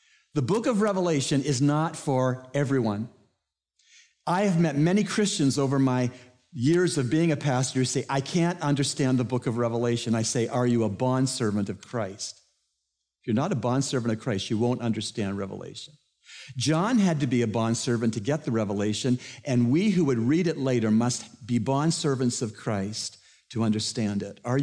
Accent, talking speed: American, 180 wpm